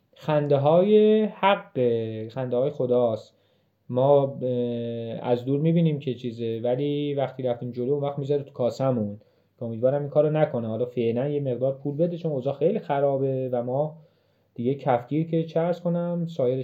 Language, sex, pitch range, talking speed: Persian, male, 115-165 Hz, 150 wpm